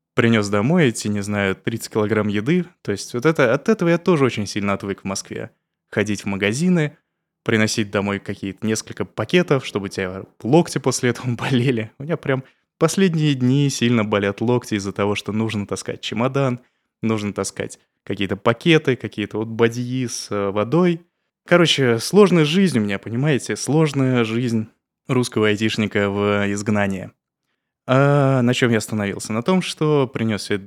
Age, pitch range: 20-39, 105-140 Hz